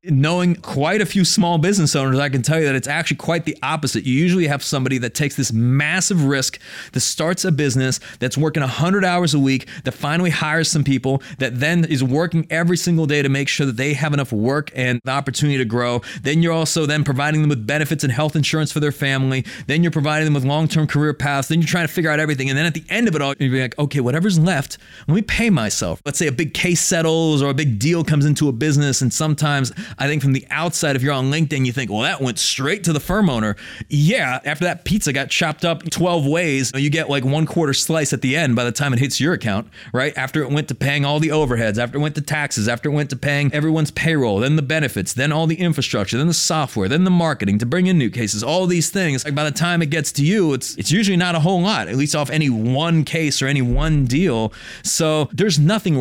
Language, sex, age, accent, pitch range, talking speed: English, male, 30-49, American, 135-160 Hz, 260 wpm